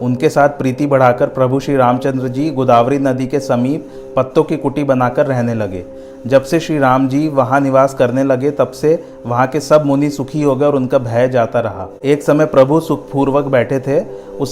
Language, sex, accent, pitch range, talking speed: Hindi, male, native, 130-145 Hz, 200 wpm